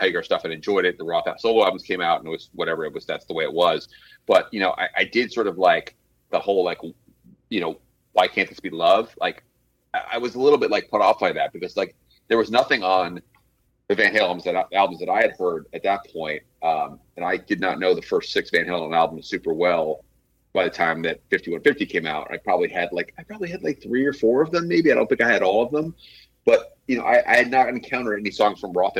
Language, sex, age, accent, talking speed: English, male, 30-49, American, 265 wpm